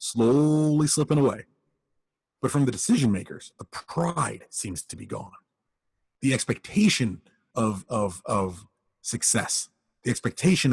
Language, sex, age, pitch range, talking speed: English, male, 30-49, 100-135 Hz, 125 wpm